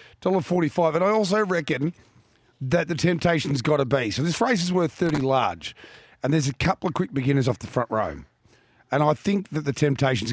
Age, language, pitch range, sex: 40-59, English, 125-160 Hz, male